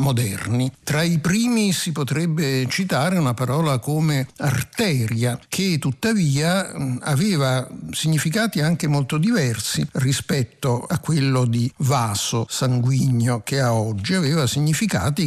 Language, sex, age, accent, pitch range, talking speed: Italian, male, 60-79, native, 125-165 Hz, 115 wpm